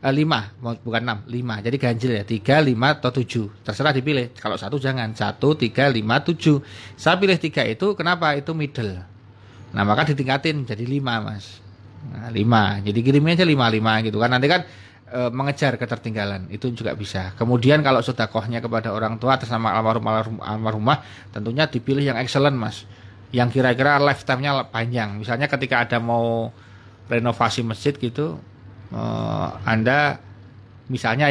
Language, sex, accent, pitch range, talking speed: Indonesian, male, native, 110-135 Hz, 150 wpm